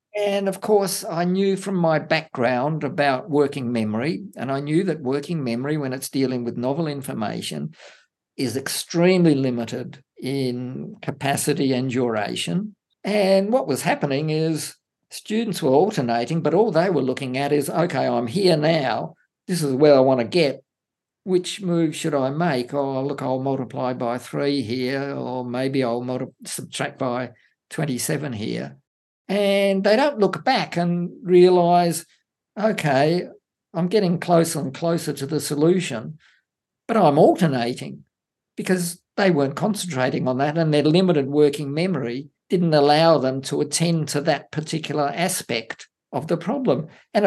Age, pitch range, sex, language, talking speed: 50-69, 135-180 Hz, male, English, 150 wpm